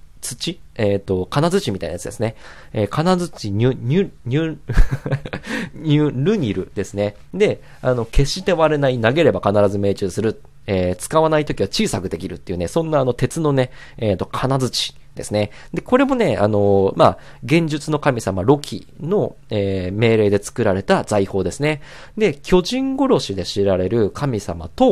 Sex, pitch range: male, 100-150 Hz